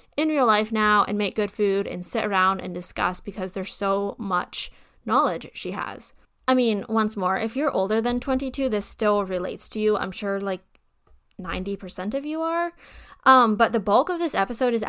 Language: English